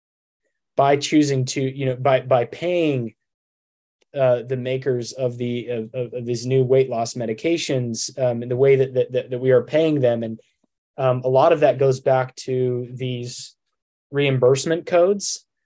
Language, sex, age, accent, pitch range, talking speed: English, male, 20-39, American, 120-135 Hz, 170 wpm